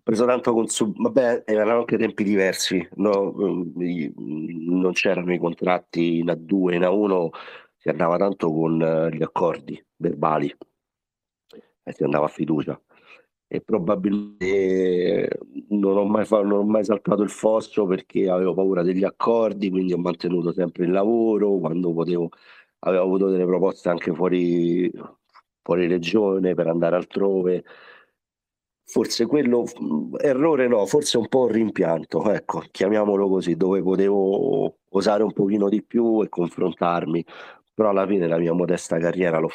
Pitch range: 85-100 Hz